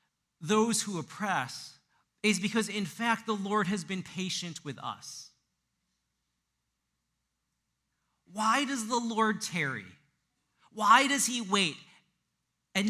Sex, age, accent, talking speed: male, 40-59, American, 110 wpm